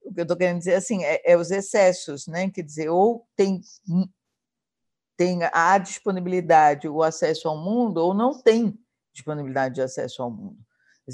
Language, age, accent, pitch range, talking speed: Portuguese, 50-69, Brazilian, 155-205 Hz, 170 wpm